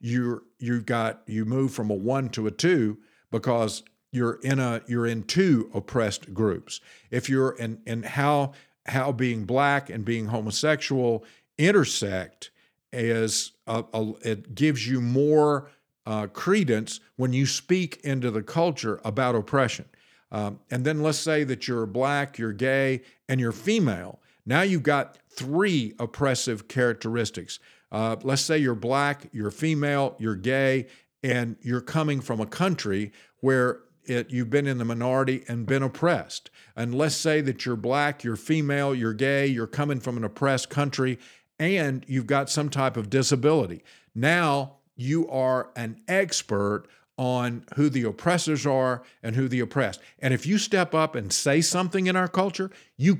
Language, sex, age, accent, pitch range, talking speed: English, male, 50-69, American, 115-145 Hz, 160 wpm